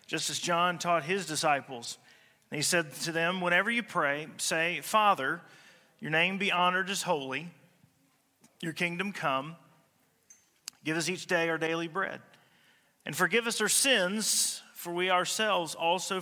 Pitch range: 140-175 Hz